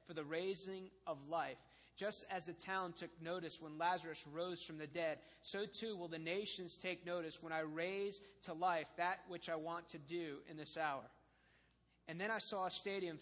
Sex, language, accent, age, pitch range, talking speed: male, English, American, 30-49, 165-190 Hz, 200 wpm